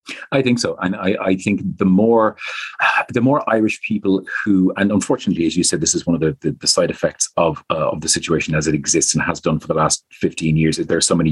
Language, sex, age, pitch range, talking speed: English, male, 40-59, 85-105 Hz, 255 wpm